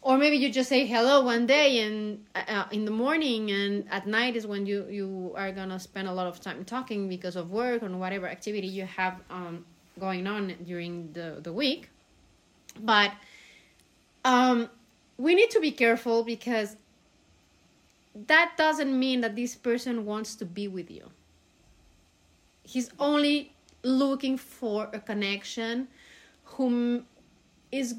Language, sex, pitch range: English, female, 200-255 Hz